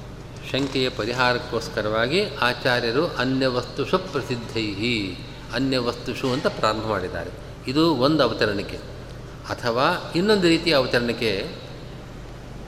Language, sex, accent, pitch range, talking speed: Kannada, male, native, 130-160 Hz, 75 wpm